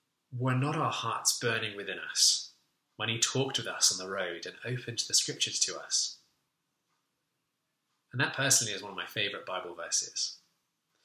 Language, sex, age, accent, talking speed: English, male, 20-39, British, 170 wpm